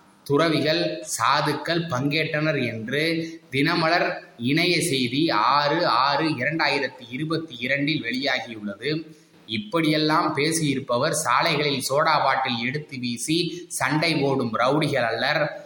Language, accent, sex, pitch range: Tamil, native, male, 130-165 Hz